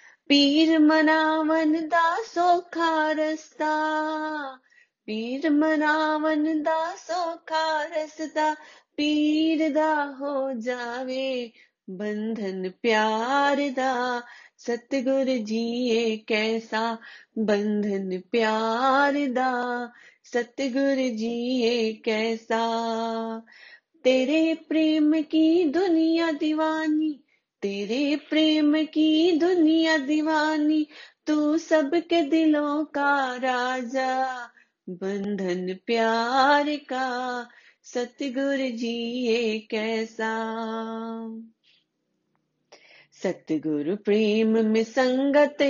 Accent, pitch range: native, 225-310 Hz